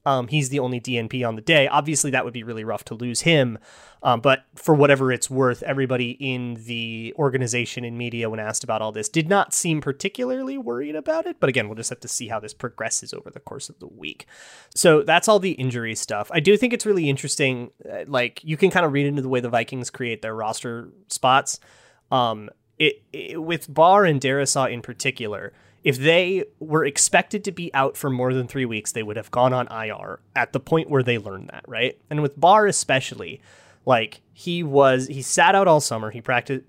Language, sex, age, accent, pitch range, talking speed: English, male, 30-49, American, 120-150 Hz, 220 wpm